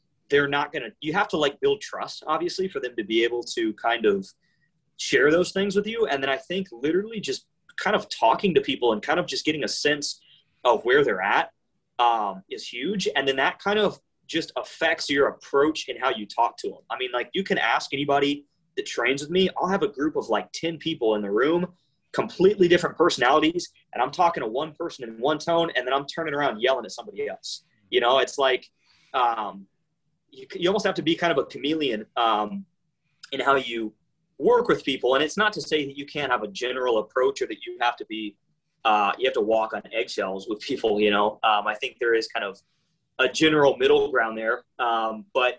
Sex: male